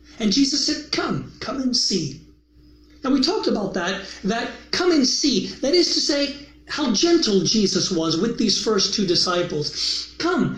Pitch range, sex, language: 165-270 Hz, male, English